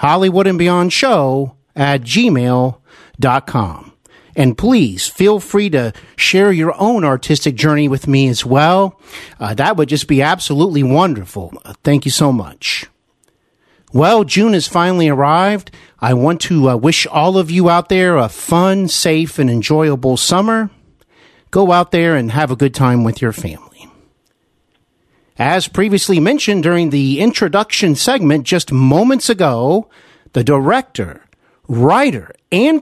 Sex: male